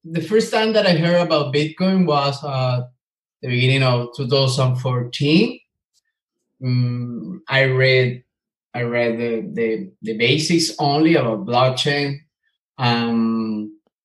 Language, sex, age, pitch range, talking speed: English, male, 20-39, 125-155 Hz, 115 wpm